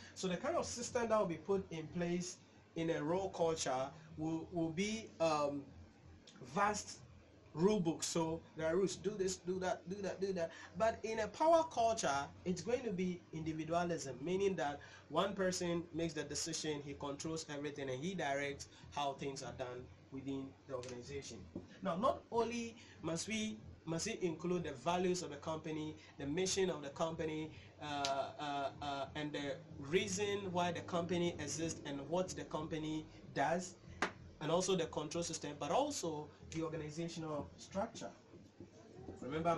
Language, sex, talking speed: English, male, 165 wpm